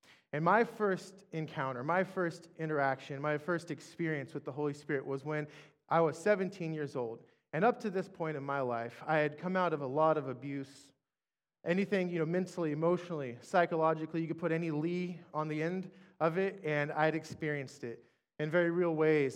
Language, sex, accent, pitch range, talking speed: English, male, American, 140-170 Hz, 195 wpm